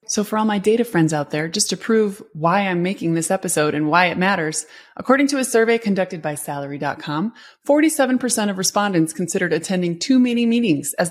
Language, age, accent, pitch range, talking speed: English, 20-39, American, 165-235 Hz, 195 wpm